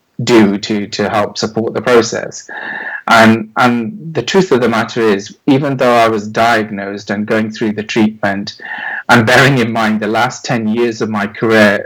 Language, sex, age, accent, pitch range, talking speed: English, male, 30-49, British, 105-115 Hz, 180 wpm